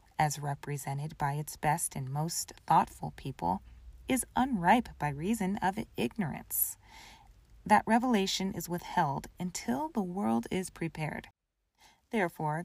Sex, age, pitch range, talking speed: female, 30-49, 155-215 Hz, 120 wpm